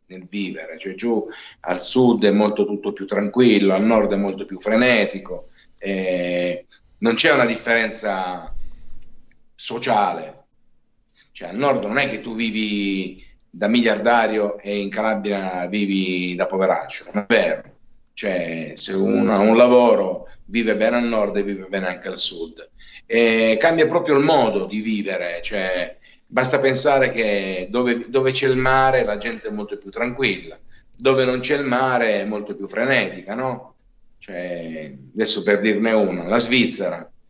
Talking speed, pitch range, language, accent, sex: 155 wpm, 95-120 Hz, Italian, native, male